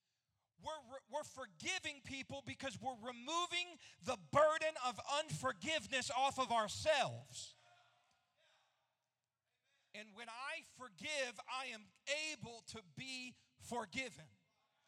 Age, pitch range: 40-59, 190-275 Hz